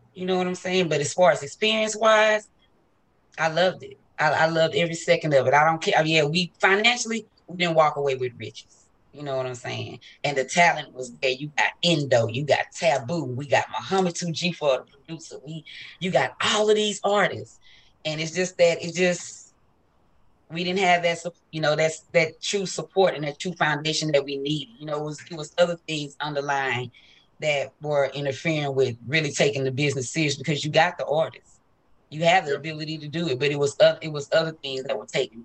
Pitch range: 140-185 Hz